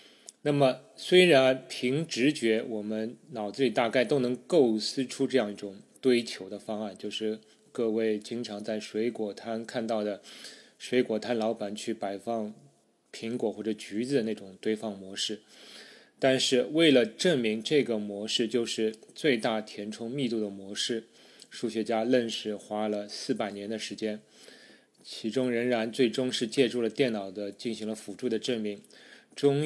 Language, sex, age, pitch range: Chinese, male, 20-39, 105-125 Hz